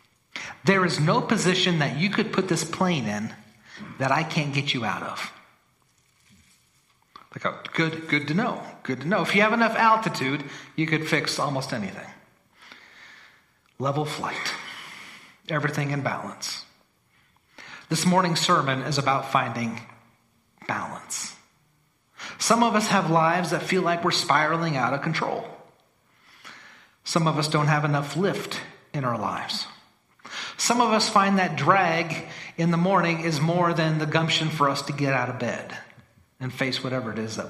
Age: 40-59